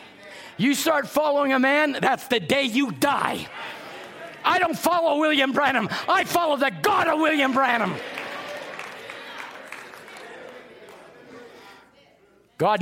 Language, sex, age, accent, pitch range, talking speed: English, male, 50-69, American, 220-310 Hz, 110 wpm